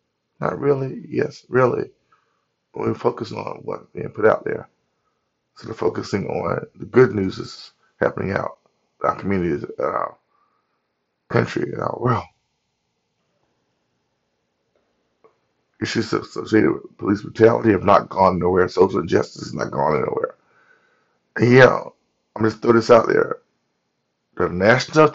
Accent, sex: American, male